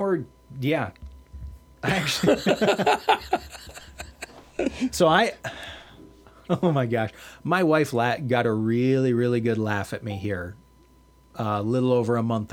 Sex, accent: male, American